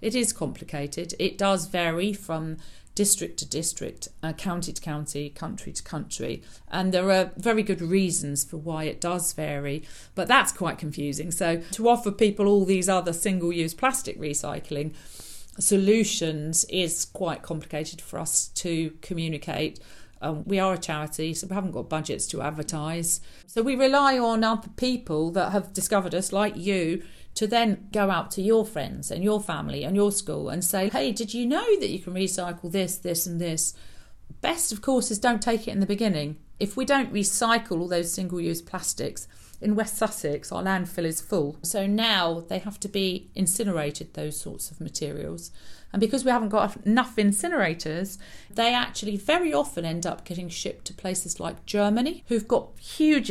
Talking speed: 180 wpm